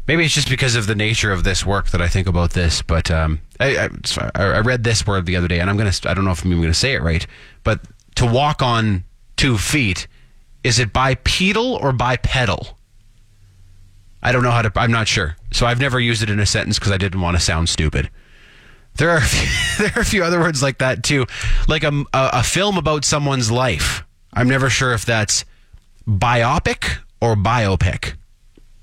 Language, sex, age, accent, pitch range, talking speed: English, male, 30-49, American, 100-130 Hz, 210 wpm